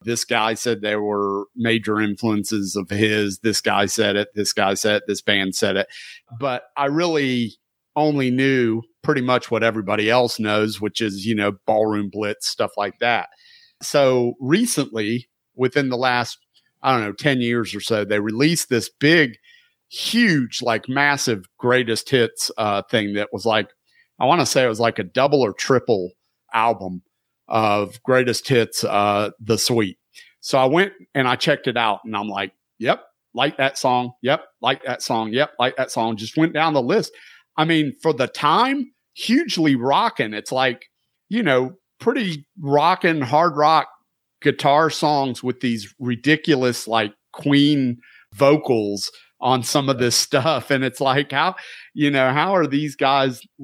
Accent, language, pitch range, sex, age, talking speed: American, English, 110-145 Hz, male, 40-59, 170 wpm